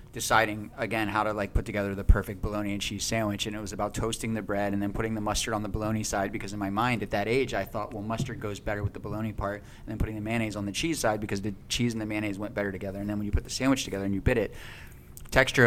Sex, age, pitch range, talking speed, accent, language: male, 30-49, 105-120 Hz, 295 wpm, American, English